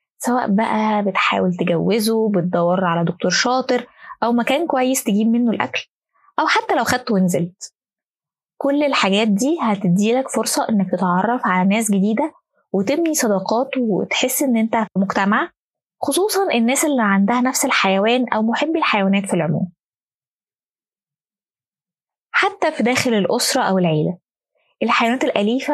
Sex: female